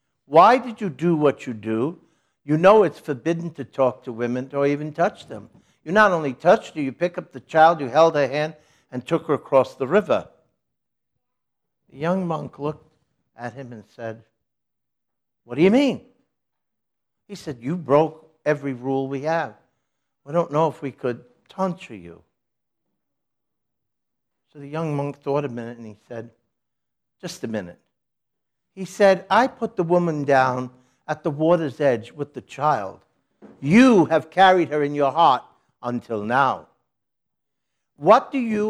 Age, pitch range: 60-79, 130-175 Hz